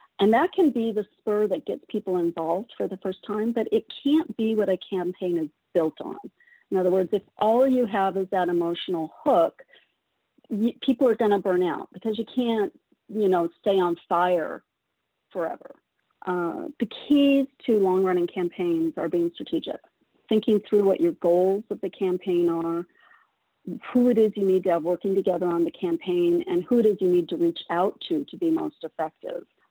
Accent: American